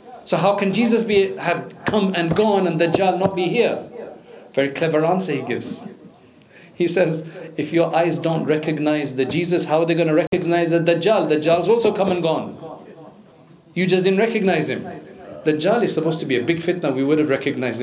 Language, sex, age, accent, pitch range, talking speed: English, male, 50-69, South African, 150-180 Hz, 200 wpm